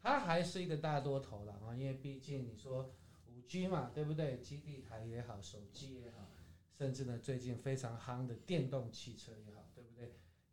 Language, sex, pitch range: Chinese, male, 110-145 Hz